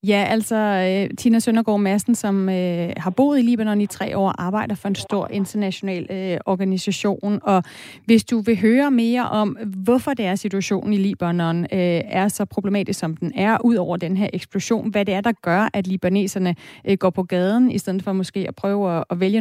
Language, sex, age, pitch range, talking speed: Danish, female, 30-49, 180-230 Hz, 205 wpm